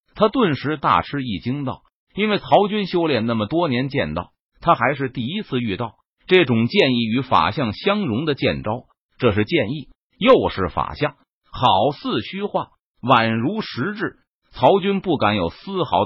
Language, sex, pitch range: Chinese, male, 120-185 Hz